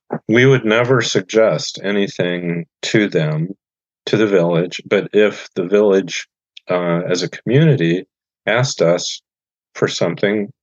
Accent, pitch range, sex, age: American, 90-105 Hz, male, 50-69